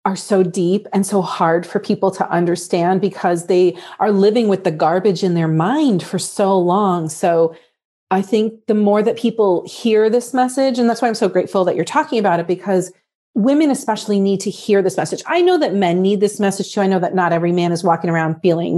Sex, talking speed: female, 225 wpm